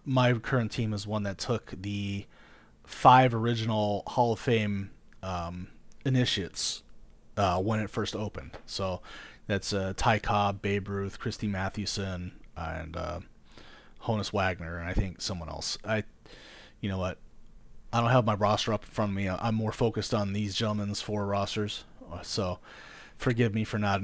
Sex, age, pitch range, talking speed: male, 30-49, 100-120 Hz, 160 wpm